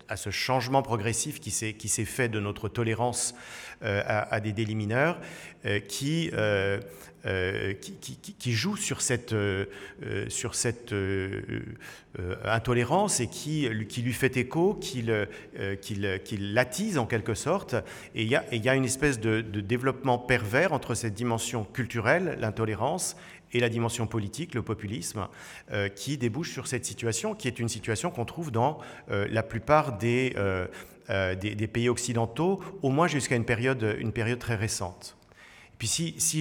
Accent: French